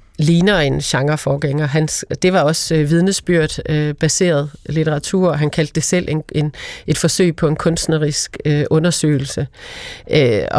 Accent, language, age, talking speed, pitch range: native, Danish, 30-49, 135 wpm, 145-165 Hz